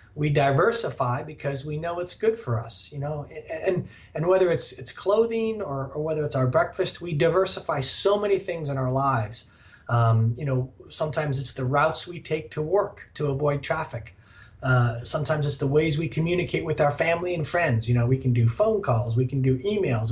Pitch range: 120-160 Hz